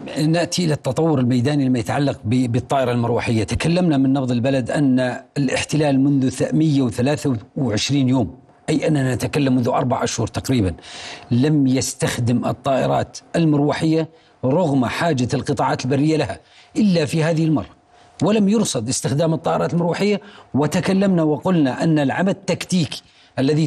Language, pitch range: Arabic, 140-175 Hz